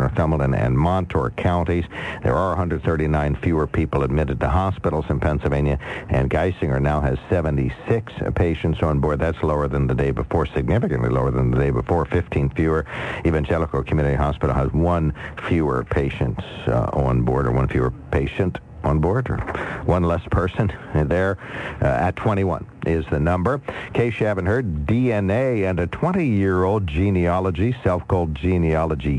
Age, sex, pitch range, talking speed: 60-79, male, 70-90 Hz, 150 wpm